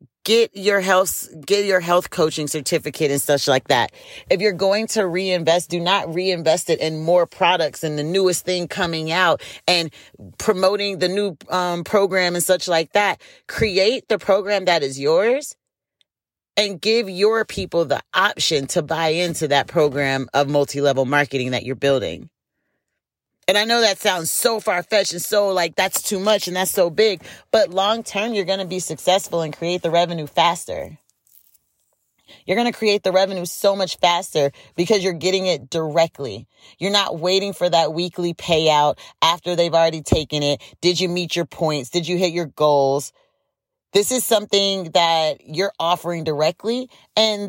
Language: English